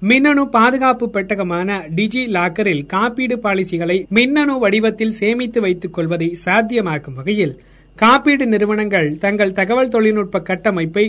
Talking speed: 105 wpm